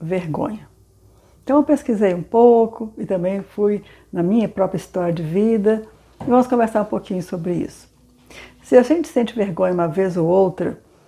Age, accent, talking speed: 60-79, Brazilian, 170 wpm